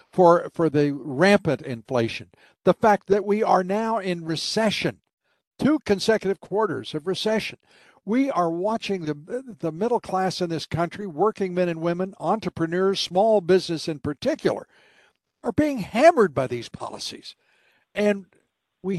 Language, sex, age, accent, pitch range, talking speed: English, male, 60-79, American, 145-200 Hz, 140 wpm